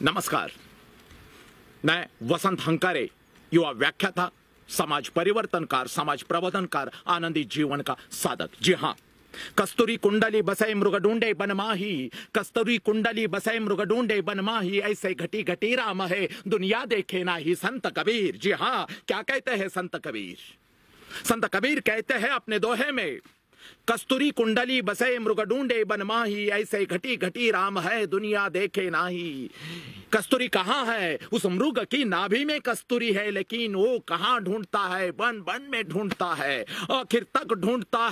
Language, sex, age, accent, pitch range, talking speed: Marathi, male, 50-69, native, 195-235 Hz, 125 wpm